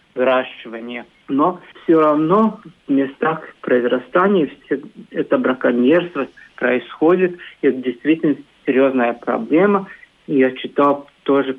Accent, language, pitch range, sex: native, Russian, 130-155 Hz, male